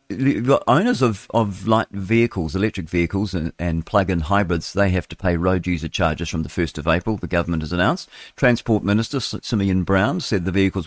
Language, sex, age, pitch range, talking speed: English, male, 50-69, 90-110 Hz, 195 wpm